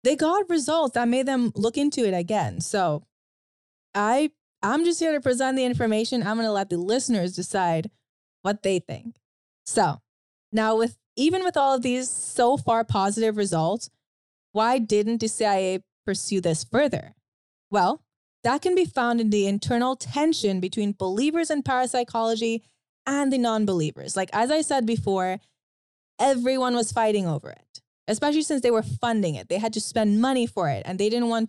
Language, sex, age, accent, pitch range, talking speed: English, female, 20-39, American, 195-255 Hz, 170 wpm